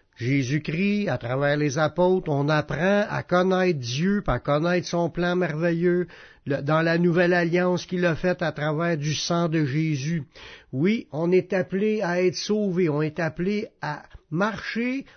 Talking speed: 160 wpm